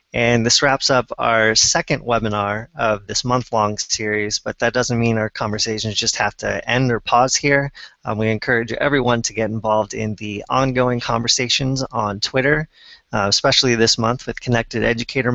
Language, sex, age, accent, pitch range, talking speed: English, male, 20-39, American, 110-130 Hz, 170 wpm